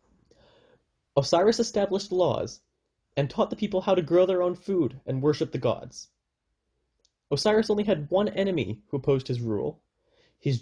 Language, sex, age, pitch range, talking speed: English, male, 10-29, 125-180 Hz, 155 wpm